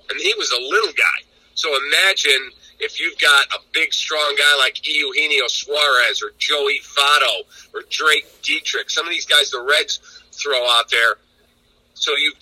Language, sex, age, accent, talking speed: English, male, 50-69, American, 170 wpm